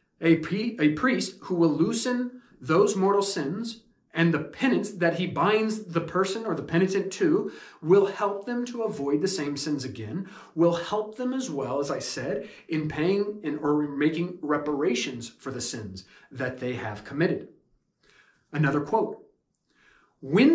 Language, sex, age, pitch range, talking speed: English, male, 30-49, 155-200 Hz, 150 wpm